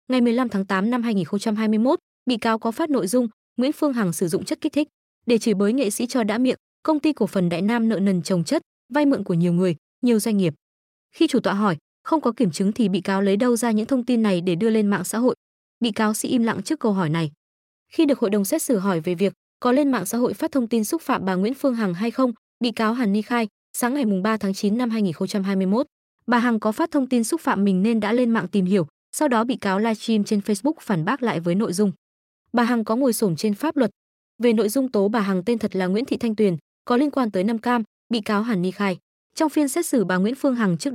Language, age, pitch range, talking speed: Vietnamese, 20-39, 195-250 Hz, 275 wpm